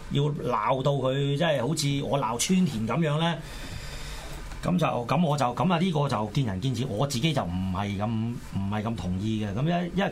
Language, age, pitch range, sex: Chinese, 30-49, 110-155 Hz, male